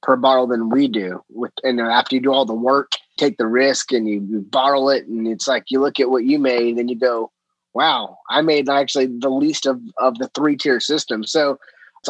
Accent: American